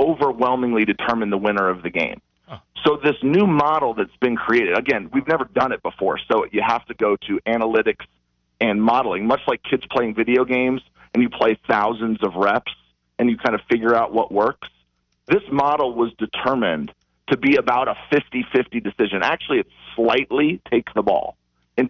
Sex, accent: male, American